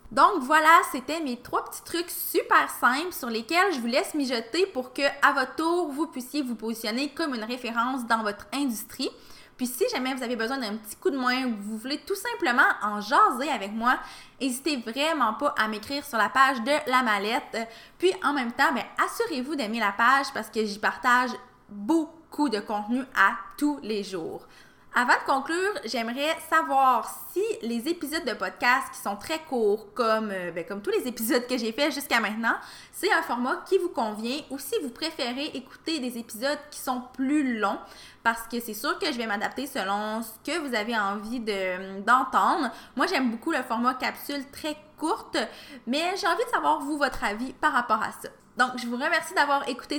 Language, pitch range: French, 230-310 Hz